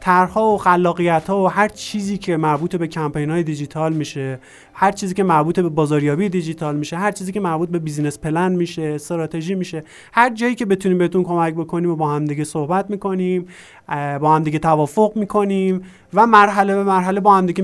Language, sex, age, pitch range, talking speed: Persian, male, 30-49, 150-185 Hz, 185 wpm